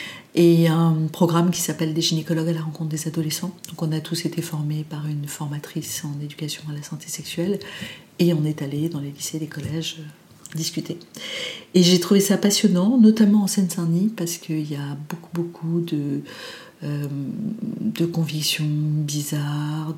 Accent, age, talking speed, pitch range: French, 40-59, 170 wpm, 150-180 Hz